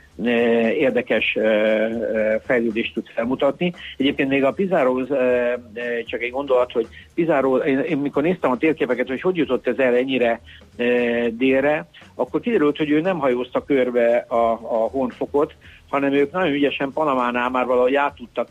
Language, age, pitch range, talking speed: Hungarian, 60-79, 115-135 Hz, 145 wpm